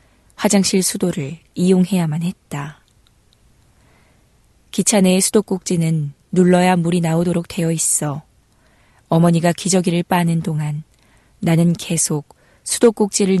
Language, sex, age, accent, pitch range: Korean, female, 20-39, native, 155-190 Hz